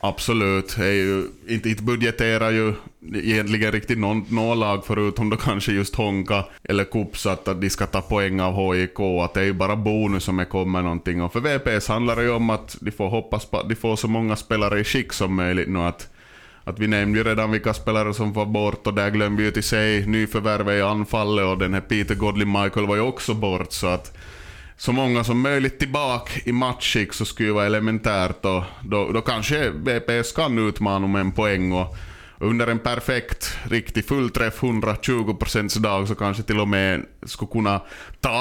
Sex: male